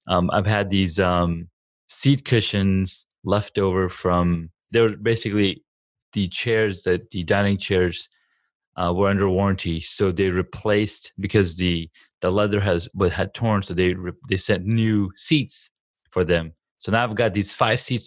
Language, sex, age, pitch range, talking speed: English, male, 20-39, 90-110 Hz, 165 wpm